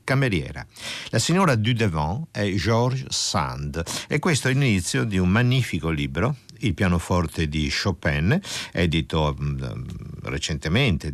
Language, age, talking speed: Italian, 50-69, 115 wpm